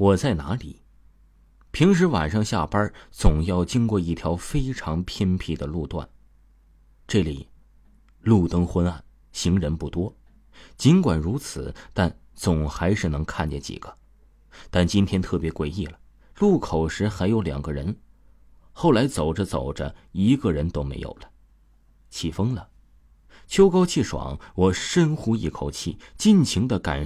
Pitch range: 75-105 Hz